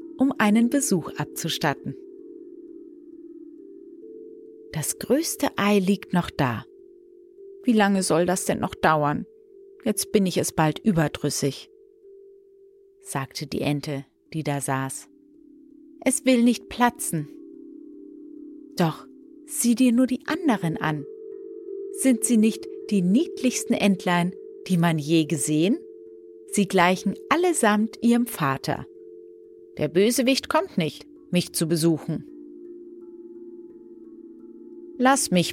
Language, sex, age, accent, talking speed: German, female, 30-49, German, 110 wpm